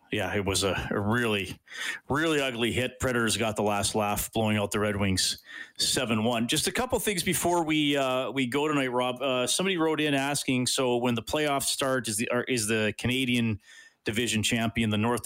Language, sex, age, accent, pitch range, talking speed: English, male, 30-49, American, 105-130 Hz, 195 wpm